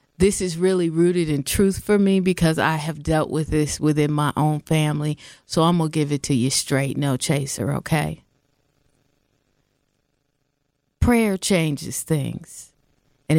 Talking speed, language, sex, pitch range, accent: 150 wpm, English, female, 145-160 Hz, American